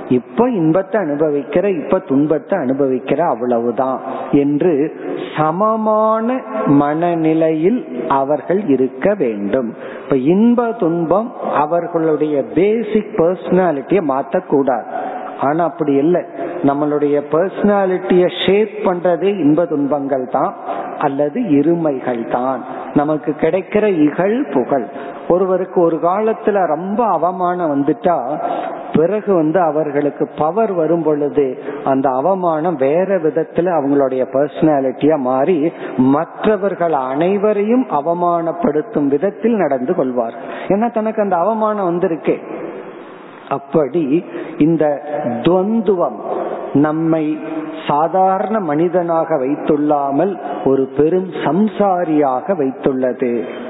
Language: Tamil